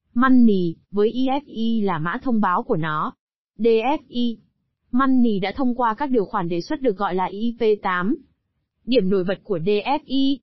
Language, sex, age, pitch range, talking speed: Vietnamese, female, 20-39, 205-255 Hz, 160 wpm